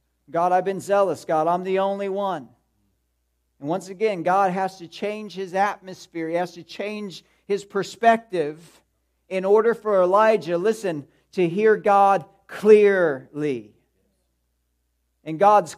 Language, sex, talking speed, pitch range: English, male, 135 wpm, 120-190 Hz